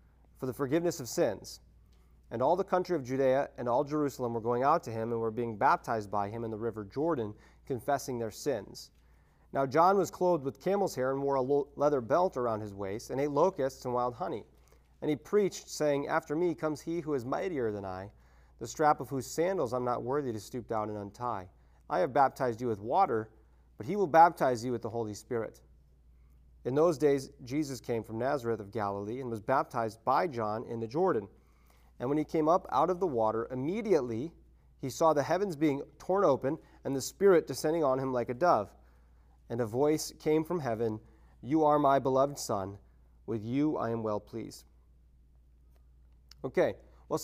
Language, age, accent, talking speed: English, 30-49, American, 200 wpm